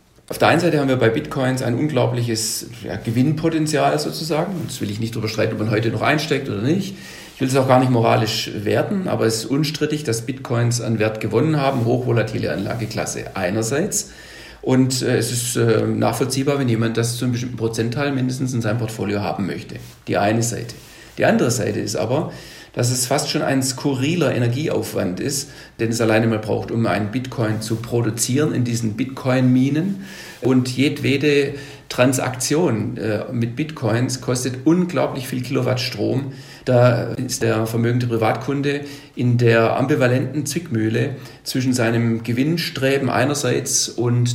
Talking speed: 160 wpm